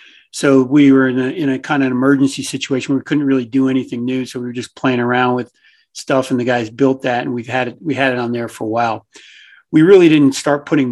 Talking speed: 265 wpm